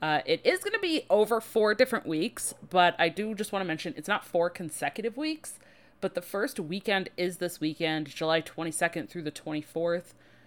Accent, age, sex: American, 30-49, female